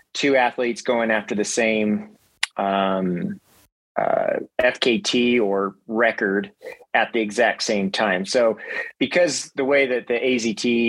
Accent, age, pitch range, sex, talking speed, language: American, 30-49, 105-120 Hz, male, 125 wpm, English